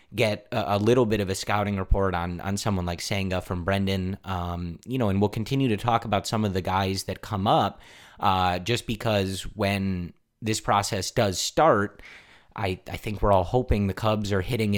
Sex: male